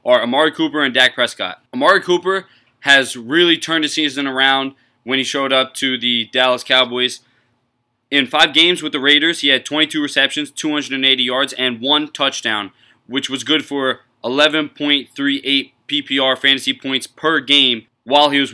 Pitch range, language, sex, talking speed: 125-155 Hz, English, male, 160 wpm